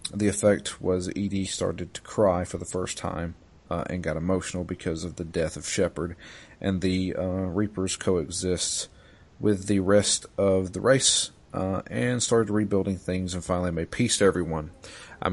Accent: American